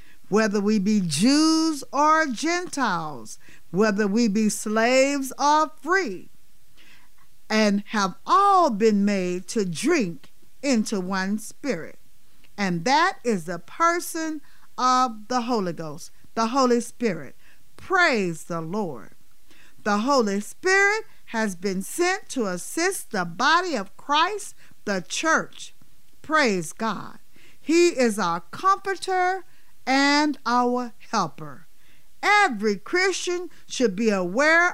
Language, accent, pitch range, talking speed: English, American, 205-315 Hz, 110 wpm